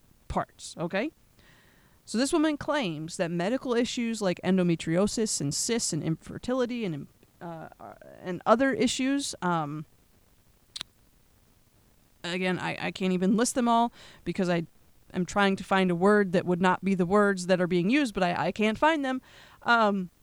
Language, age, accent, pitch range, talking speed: English, 30-49, American, 180-235 Hz, 155 wpm